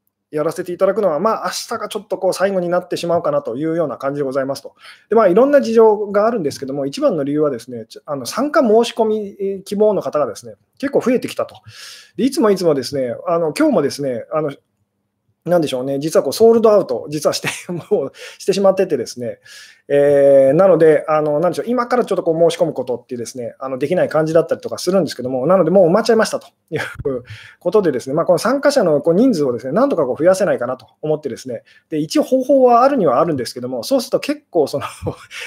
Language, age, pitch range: Japanese, 20-39, 145-225 Hz